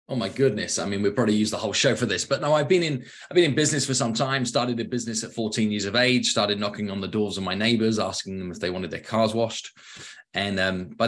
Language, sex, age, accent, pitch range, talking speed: English, male, 20-39, British, 100-120 Hz, 280 wpm